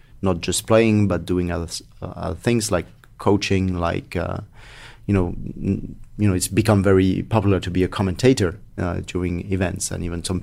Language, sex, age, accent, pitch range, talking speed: English, male, 30-49, French, 90-110 Hz, 175 wpm